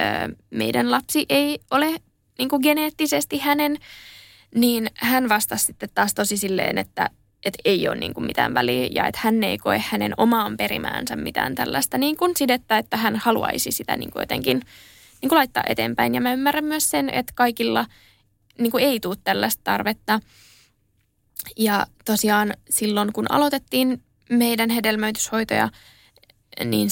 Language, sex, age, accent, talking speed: Finnish, female, 20-39, native, 125 wpm